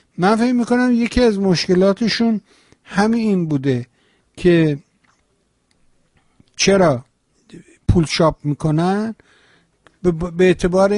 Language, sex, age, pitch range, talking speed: Persian, male, 50-69, 150-185 Hz, 95 wpm